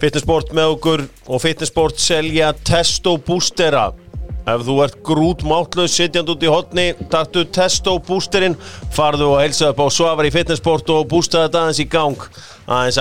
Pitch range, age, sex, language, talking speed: 110-150 Hz, 40-59, male, English, 165 wpm